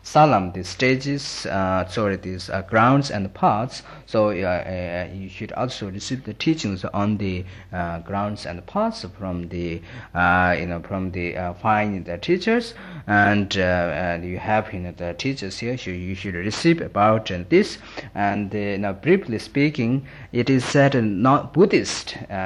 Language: Italian